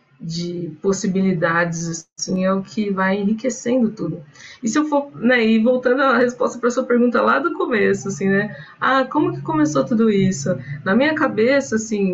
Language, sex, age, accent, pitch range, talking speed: Portuguese, female, 20-39, Brazilian, 185-235 Hz, 180 wpm